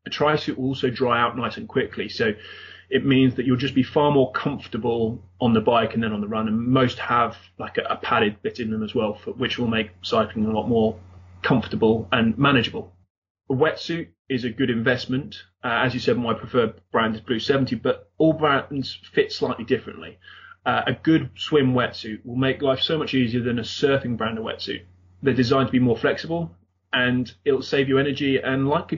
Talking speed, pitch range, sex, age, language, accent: 210 wpm, 115-140 Hz, male, 30-49, English, British